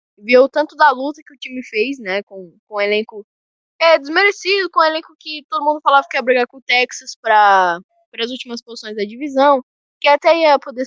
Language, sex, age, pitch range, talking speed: Portuguese, female, 10-29, 220-285 Hz, 215 wpm